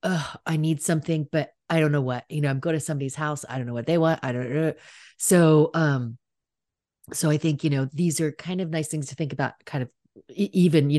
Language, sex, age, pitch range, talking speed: English, female, 30-49, 140-180 Hz, 245 wpm